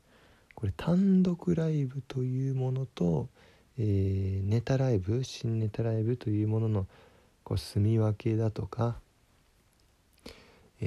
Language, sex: Japanese, male